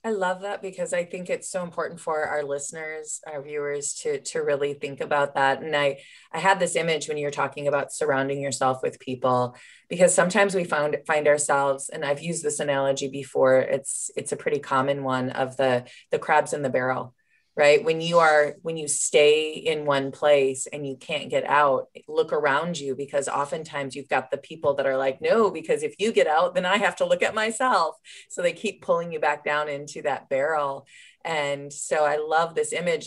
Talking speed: 210 wpm